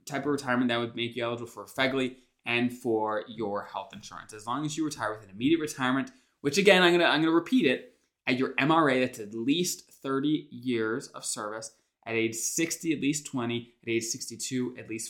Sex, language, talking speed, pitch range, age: male, English, 220 wpm, 115-150 Hz, 20-39